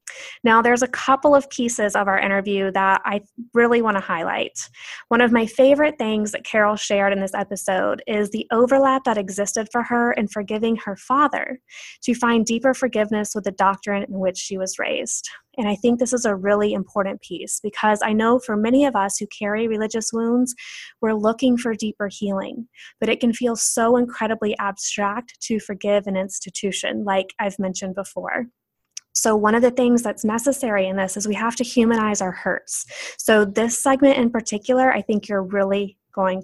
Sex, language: female, English